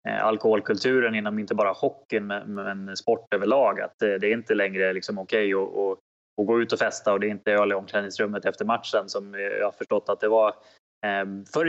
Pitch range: 105-125 Hz